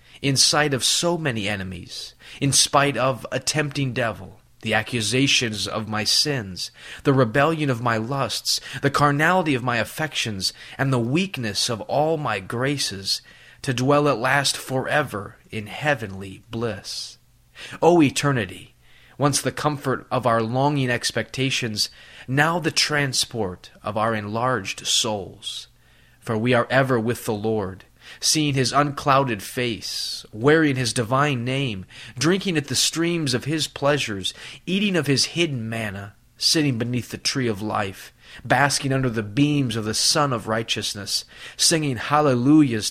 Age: 20-39